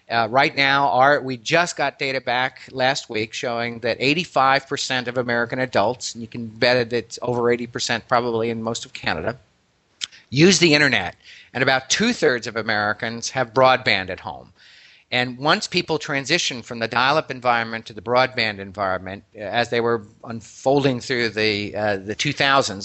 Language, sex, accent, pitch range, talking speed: English, male, American, 115-150 Hz, 165 wpm